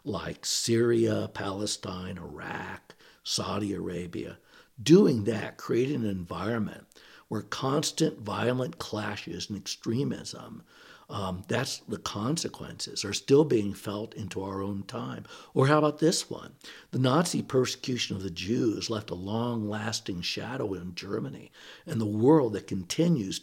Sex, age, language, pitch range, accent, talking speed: male, 60-79, English, 100-130 Hz, American, 130 wpm